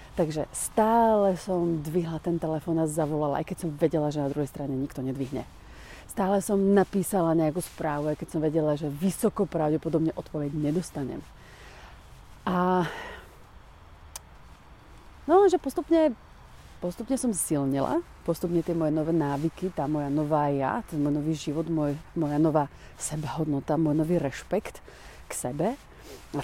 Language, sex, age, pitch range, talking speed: Slovak, female, 30-49, 150-185 Hz, 140 wpm